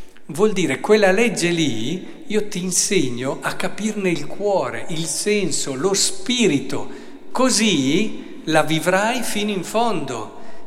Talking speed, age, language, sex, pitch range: 125 wpm, 50-69, Italian, male, 150-215 Hz